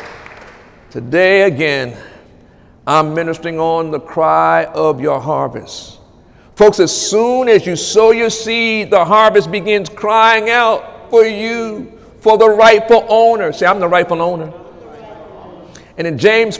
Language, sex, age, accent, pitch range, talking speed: English, male, 50-69, American, 185-225 Hz, 135 wpm